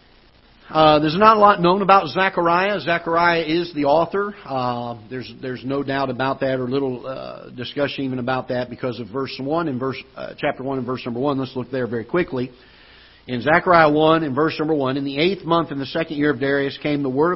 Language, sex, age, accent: English, male, 50-69, American